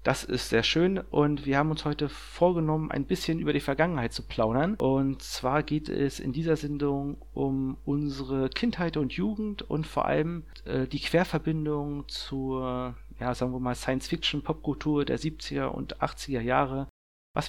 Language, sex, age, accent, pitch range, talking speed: German, male, 40-59, German, 125-150 Hz, 160 wpm